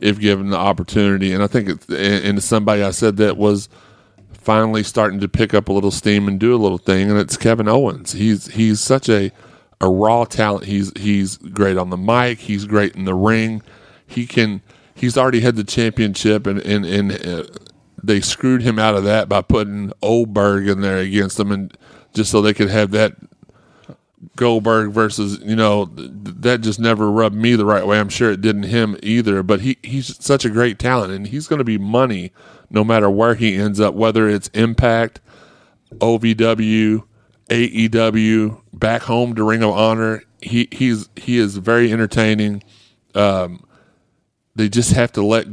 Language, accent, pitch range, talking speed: English, American, 100-115 Hz, 185 wpm